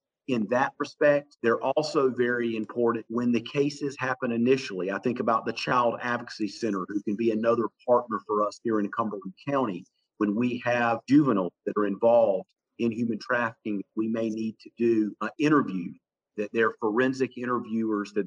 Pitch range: 110-125 Hz